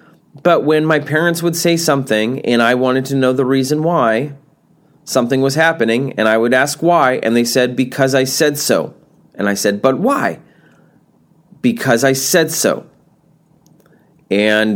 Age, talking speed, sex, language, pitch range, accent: 30-49, 165 wpm, male, English, 120-165 Hz, American